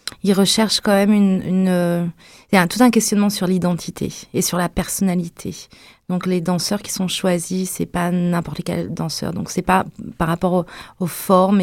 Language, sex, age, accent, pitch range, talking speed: French, female, 30-49, French, 170-190 Hz, 190 wpm